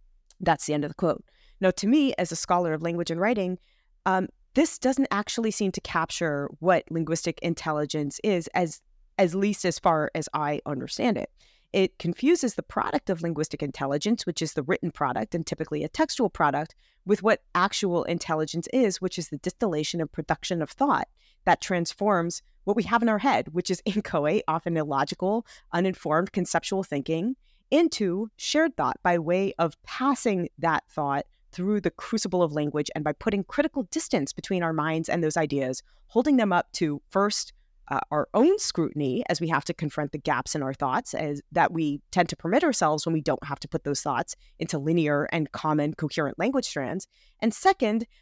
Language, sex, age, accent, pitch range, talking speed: English, female, 30-49, American, 160-210 Hz, 185 wpm